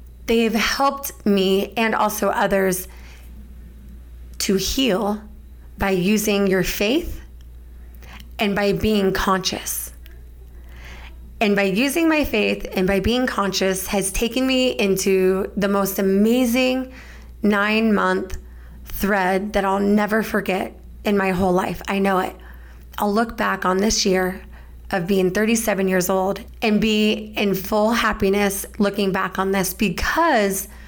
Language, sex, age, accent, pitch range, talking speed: English, female, 20-39, American, 185-215 Hz, 130 wpm